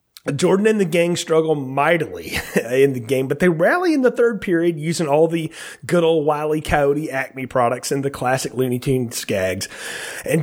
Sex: male